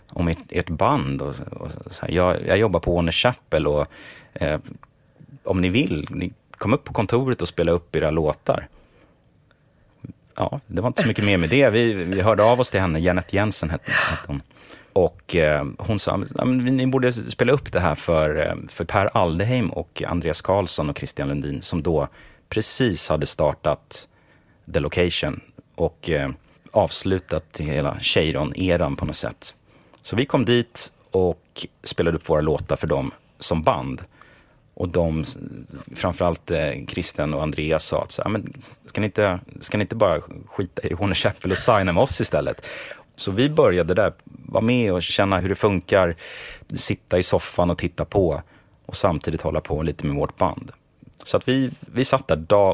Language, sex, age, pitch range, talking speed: English, male, 30-49, 85-115 Hz, 170 wpm